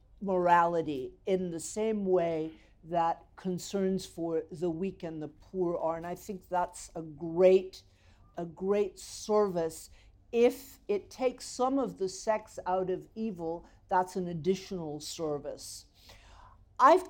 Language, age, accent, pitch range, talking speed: English, 50-69, American, 155-210 Hz, 135 wpm